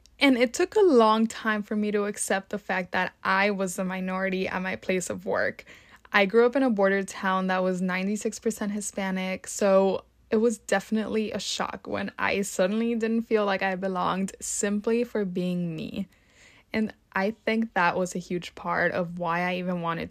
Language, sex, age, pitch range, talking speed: English, female, 20-39, 180-215 Hz, 190 wpm